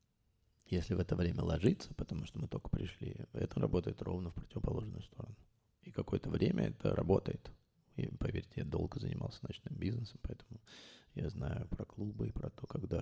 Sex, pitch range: male, 90-115 Hz